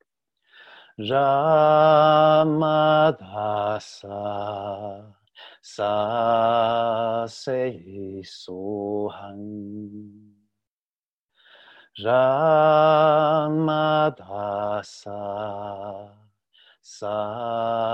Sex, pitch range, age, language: male, 105-140 Hz, 40-59, English